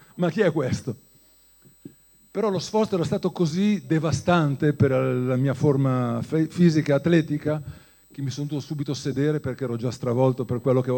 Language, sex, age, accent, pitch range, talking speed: Italian, male, 50-69, native, 130-165 Hz, 170 wpm